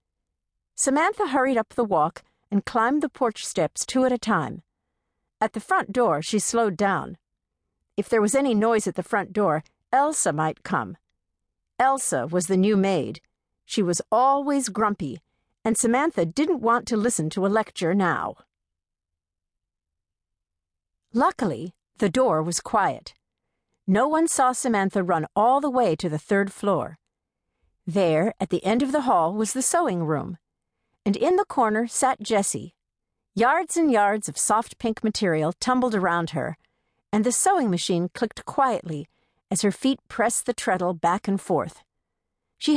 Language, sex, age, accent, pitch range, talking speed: English, female, 50-69, American, 160-240 Hz, 155 wpm